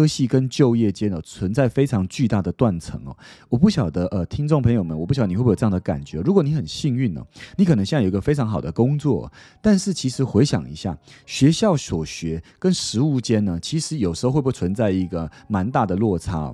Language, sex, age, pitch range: Chinese, male, 30-49, 95-140 Hz